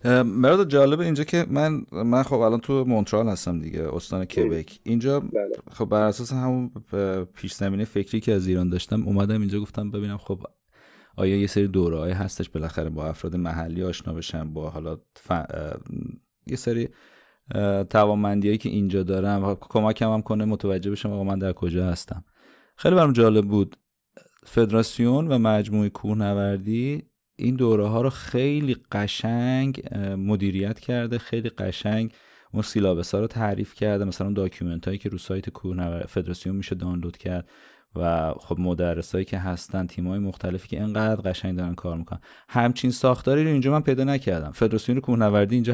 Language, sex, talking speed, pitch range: Persian, male, 155 wpm, 95-115 Hz